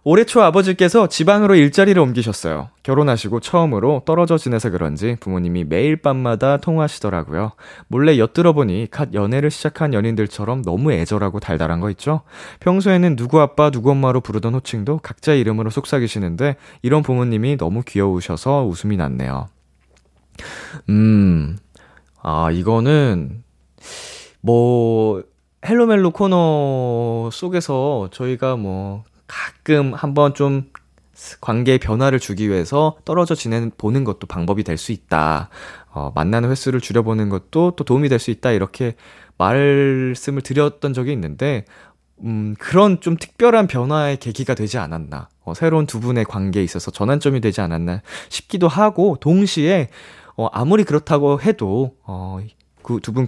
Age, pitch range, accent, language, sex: 20-39, 100-145 Hz, native, Korean, male